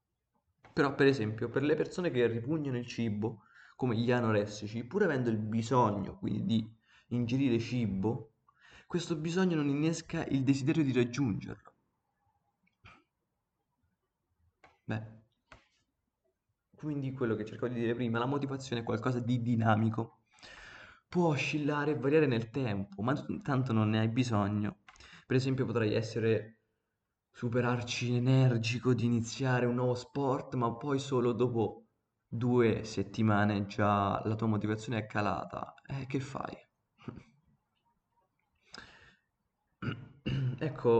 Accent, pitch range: native, 110-135 Hz